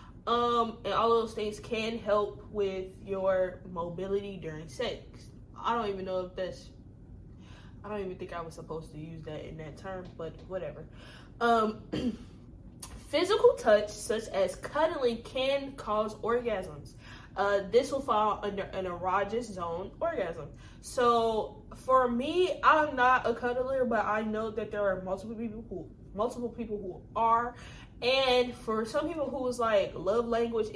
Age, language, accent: 10-29, English, American